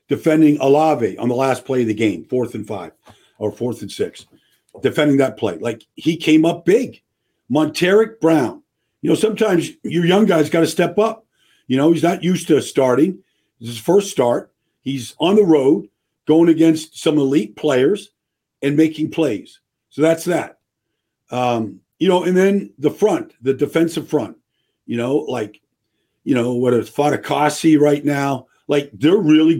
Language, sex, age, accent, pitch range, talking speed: English, male, 50-69, American, 130-160 Hz, 175 wpm